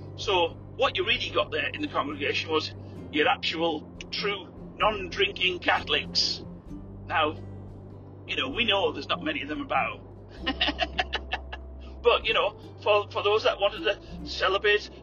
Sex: male